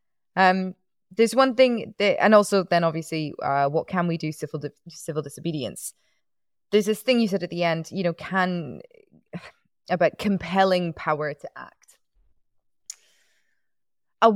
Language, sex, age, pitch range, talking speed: English, female, 20-39, 150-185 Hz, 145 wpm